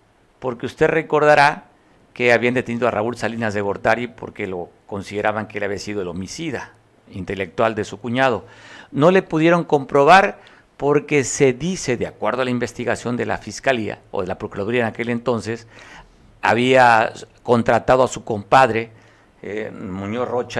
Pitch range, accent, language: 105-130 Hz, Mexican, Spanish